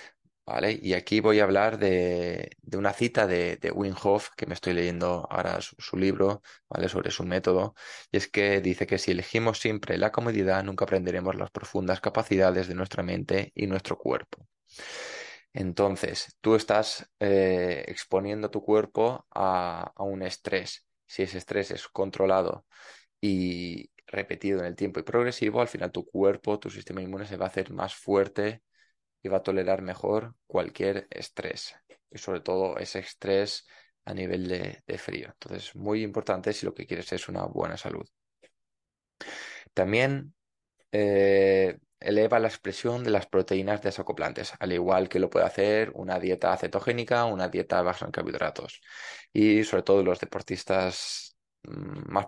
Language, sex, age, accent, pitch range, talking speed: Spanish, male, 20-39, Spanish, 95-105 Hz, 160 wpm